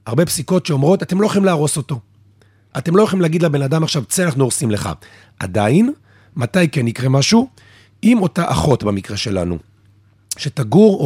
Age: 40-59